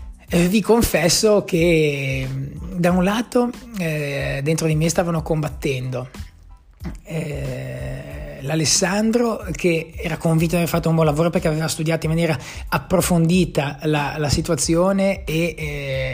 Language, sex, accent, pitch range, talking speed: Italian, male, native, 140-170 Hz, 125 wpm